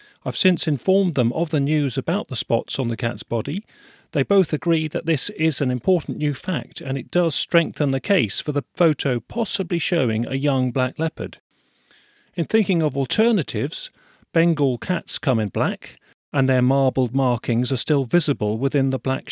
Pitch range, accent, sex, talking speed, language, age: 125-160 Hz, British, male, 180 wpm, English, 40-59